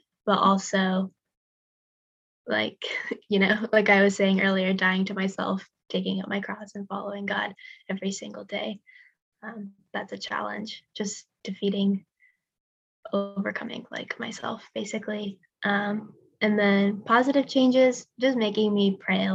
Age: 10-29